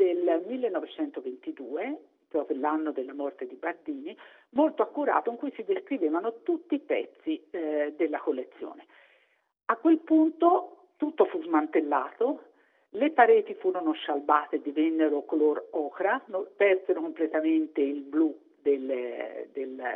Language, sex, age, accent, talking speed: Italian, female, 50-69, native, 115 wpm